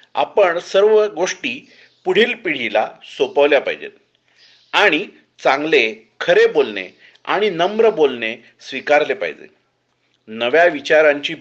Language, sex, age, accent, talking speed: Marathi, male, 40-59, native, 95 wpm